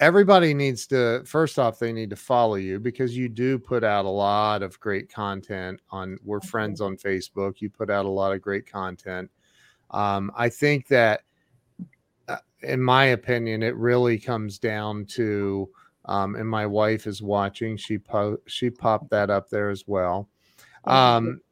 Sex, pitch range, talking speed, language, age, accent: male, 110-135 Hz, 175 wpm, English, 40-59, American